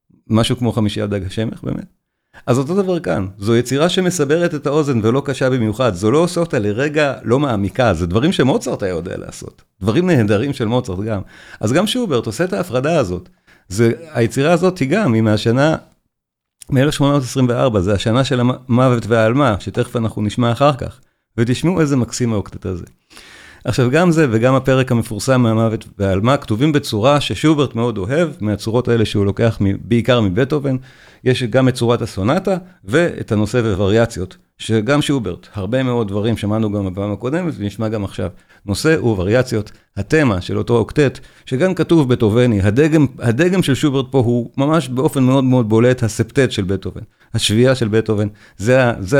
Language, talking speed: Hebrew, 160 wpm